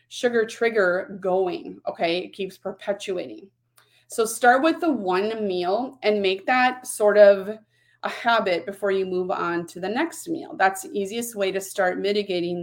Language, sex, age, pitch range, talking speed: English, female, 30-49, 180-215 Hz, 165 wpm